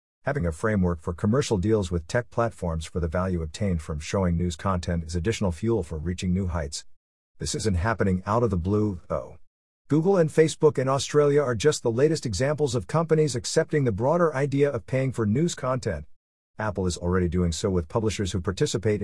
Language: English